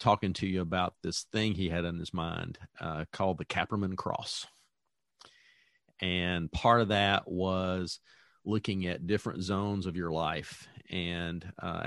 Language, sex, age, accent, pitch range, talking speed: English, male, 40-59, American, 90-110 Hz, 150 wpm